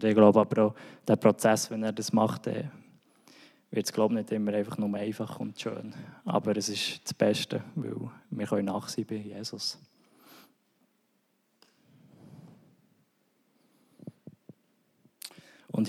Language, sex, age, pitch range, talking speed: German, male, 20-39, 110-120 Hz, 115 wpm